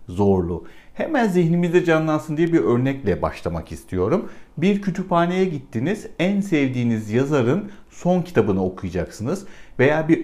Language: Turkish